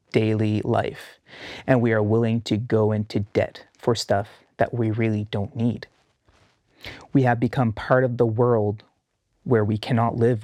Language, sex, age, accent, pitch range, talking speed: English, male, 30-49, American, 110-125 Hz, 160 wpm